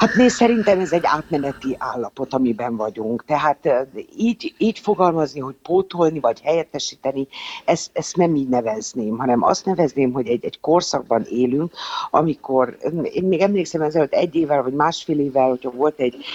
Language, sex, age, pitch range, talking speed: Hungarian, female, 60-79, 130-180 Hz, 155 wpm